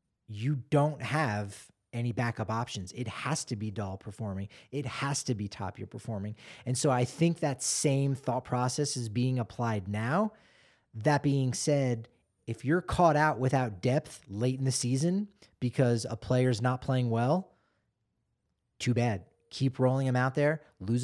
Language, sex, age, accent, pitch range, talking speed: English, male, 30-49, American, 120-145 Hz, 165 wpm